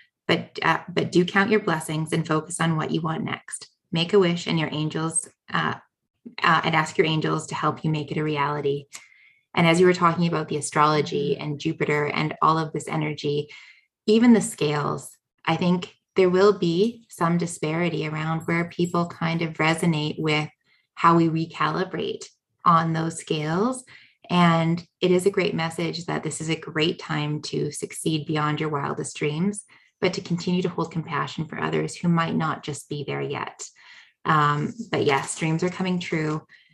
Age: 20-39